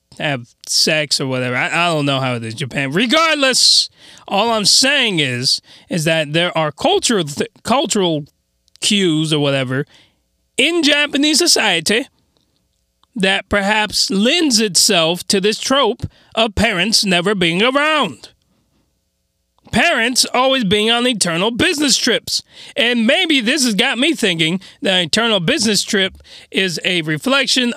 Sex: male